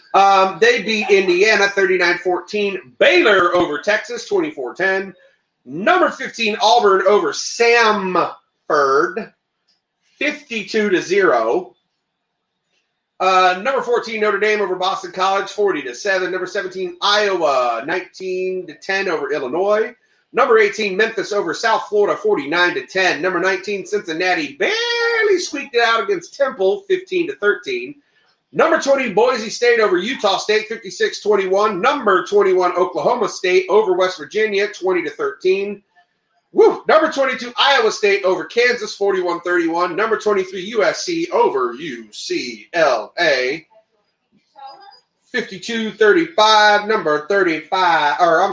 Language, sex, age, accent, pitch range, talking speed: English, male, 30-49, American, 185-280 Hz, 115 wpm